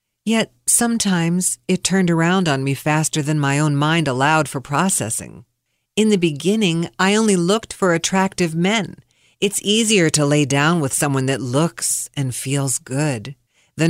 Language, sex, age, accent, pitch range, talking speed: English, female, 50-69, American, 140-200 Hz, 160 wpm